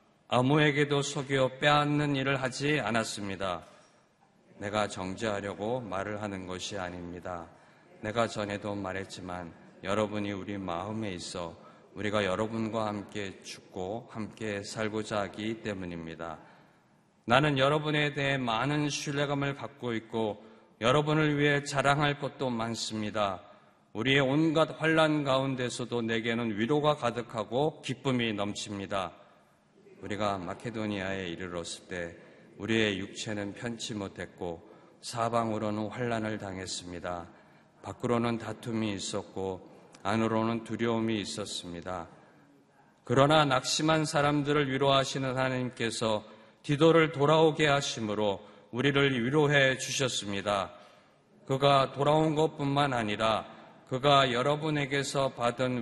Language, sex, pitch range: Korean, male, 105-140 Hz